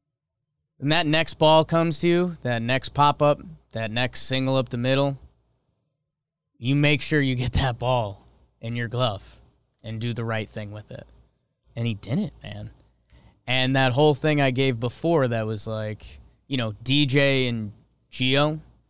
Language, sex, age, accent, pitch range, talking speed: English, male, 20-39, American, 120-155 Hz, 170 wpm